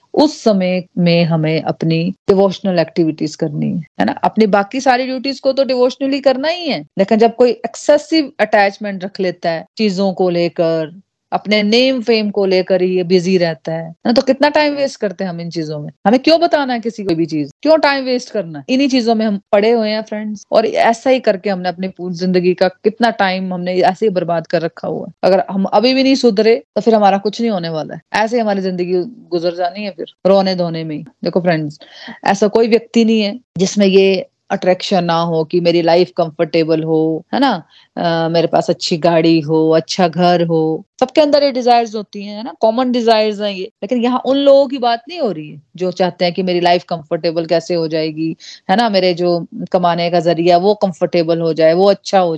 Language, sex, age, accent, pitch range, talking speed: Hindi, female, 30-49, native, 170-235 Hz, 205 wpm